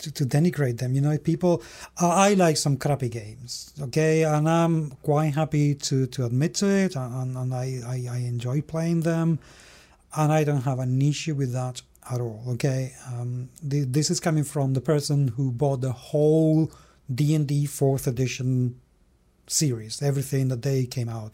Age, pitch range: 40-59, 125-160 Hz